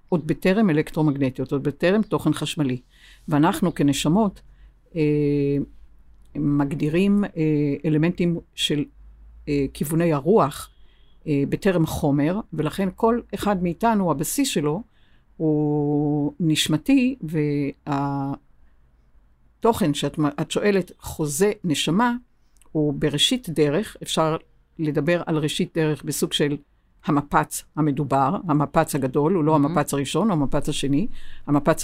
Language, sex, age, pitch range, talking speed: Hebrew, female, 60-79, 145-175 Hz, 100 wpm